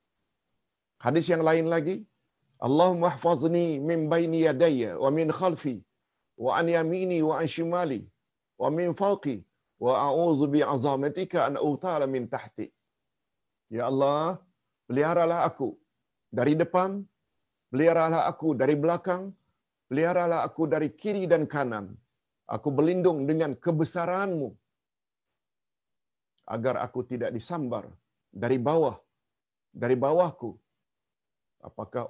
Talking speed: 110 wpm